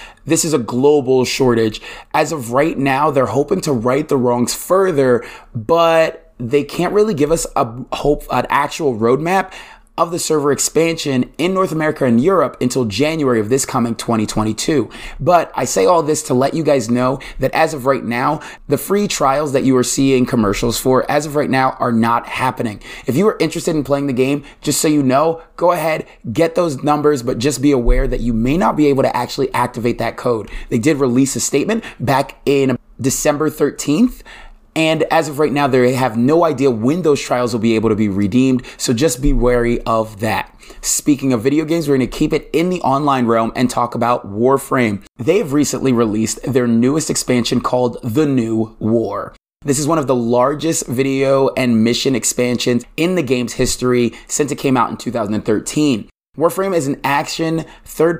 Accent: American